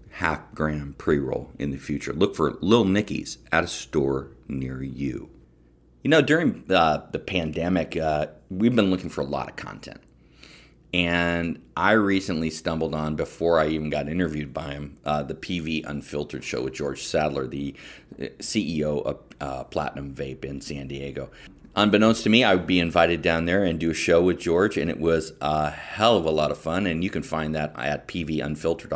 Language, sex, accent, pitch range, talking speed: English, male, American, 75-100 Hz, 190 wpm